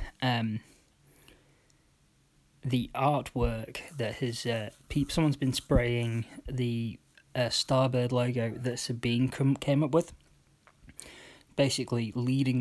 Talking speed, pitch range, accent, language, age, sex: 105 wpm, 115-135 Hz, British, English, 20-39, male